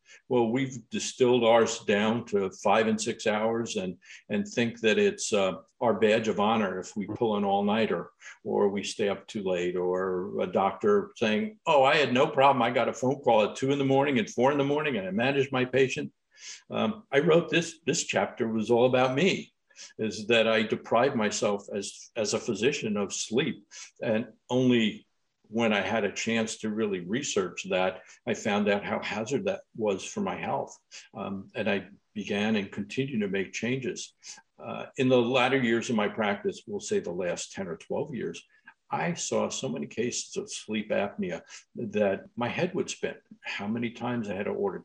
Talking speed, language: 195 wpm, English